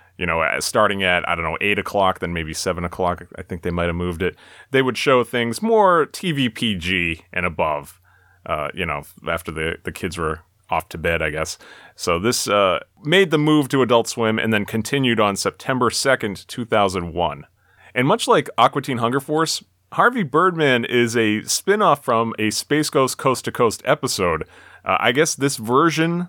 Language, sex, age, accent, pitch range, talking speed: English, male, 30-49, American, 95-135 Hz, 185 wpm